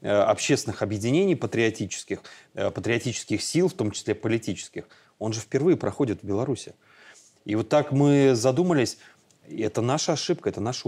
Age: 30-49